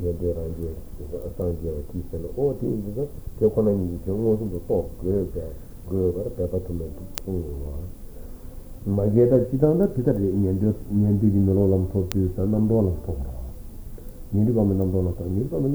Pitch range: 90-115 Hz